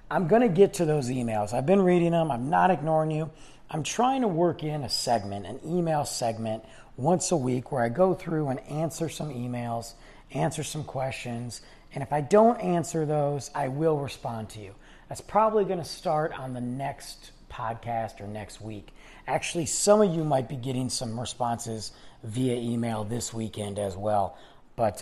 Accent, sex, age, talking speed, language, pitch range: American, male, 40-59, 185 wpm, English, 120-170 Hz